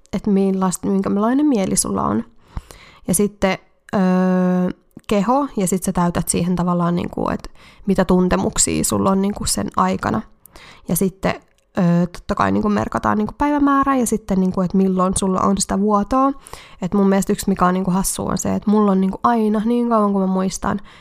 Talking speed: 175 wpm